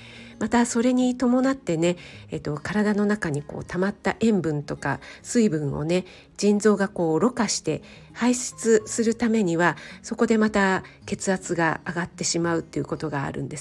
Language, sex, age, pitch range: Japanese, female, 40-59, 160-215 Hz